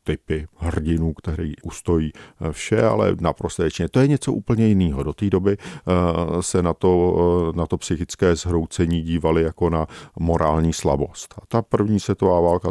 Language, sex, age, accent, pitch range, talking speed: Czech, male, 50-69, native, 80-100 Hz, 155 wpm